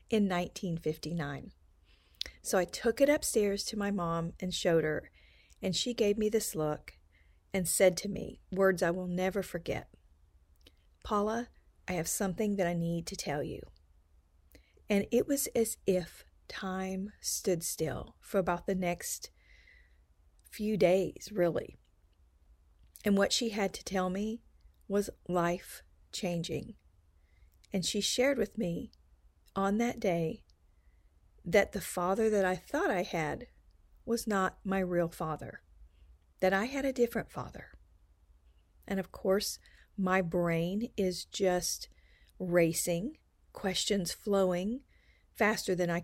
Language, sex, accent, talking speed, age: English, female, American, 135 wpm, 40-59